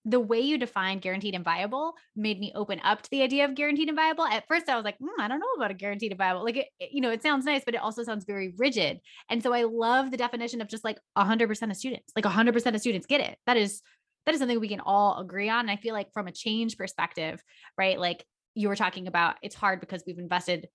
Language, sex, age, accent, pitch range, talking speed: English, female, 20-39, American, 185-230 Hz, 260 wpm